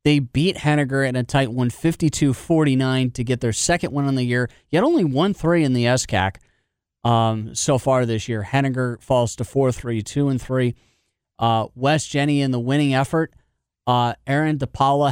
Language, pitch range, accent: English, 120-165 Hz, American